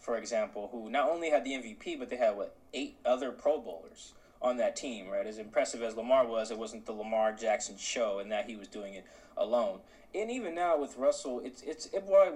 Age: 20-39